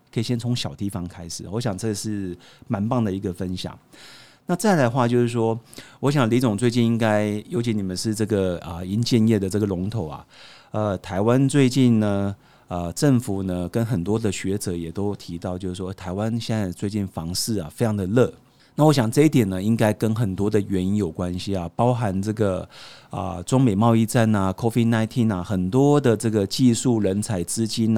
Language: Chinese